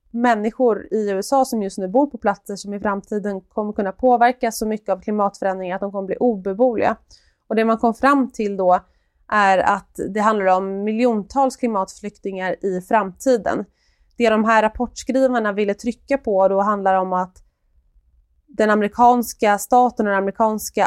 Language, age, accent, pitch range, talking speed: Swedish, 20-39, native, 195-230 Hz, 165 wpm